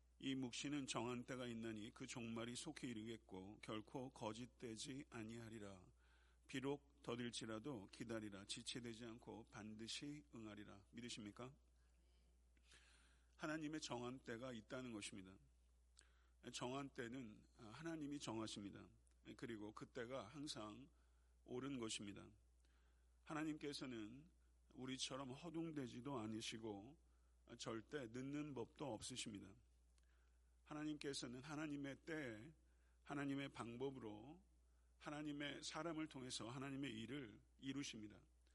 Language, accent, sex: Korean, native, male